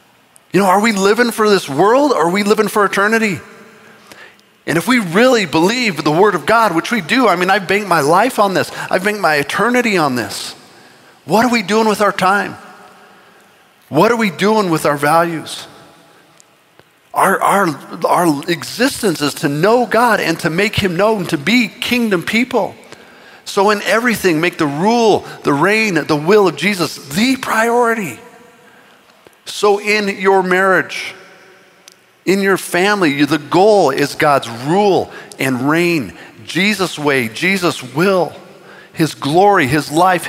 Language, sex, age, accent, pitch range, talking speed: English, male, 50-69, American, 165-210 Hz, 160 wpm